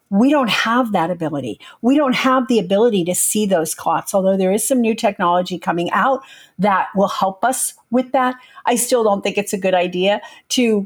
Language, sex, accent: English, female, American